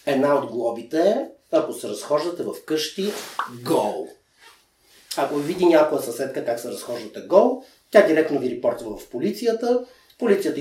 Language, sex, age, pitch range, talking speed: Bulgarian, male, 30-49, 165-255 Hz, 145 wpm